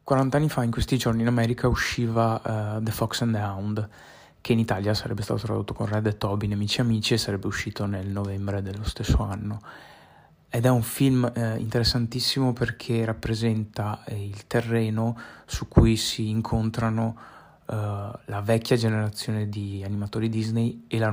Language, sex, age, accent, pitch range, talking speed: Italian, male, 20-39, native, 105-115 Hz, 170 wpm